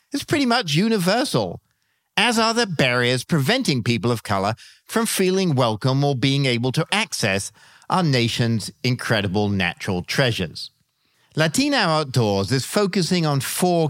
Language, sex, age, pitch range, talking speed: English, male, 50-69, 115-165 Hz, 135 wpm